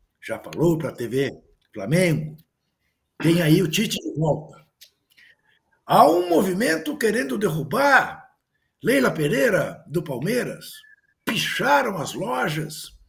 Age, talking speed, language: 60-79, 110 wpm, Portuguese